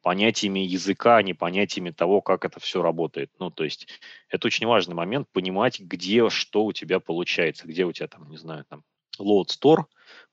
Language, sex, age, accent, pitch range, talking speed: Russian, male, 20-39, native, 90-110 Hz, 185 wpm